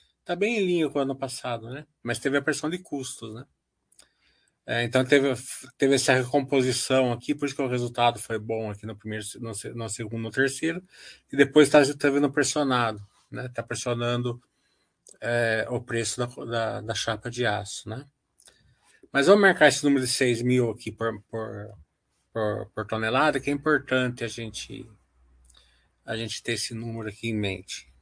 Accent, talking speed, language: Brazilian, 180 wpm, Portuguese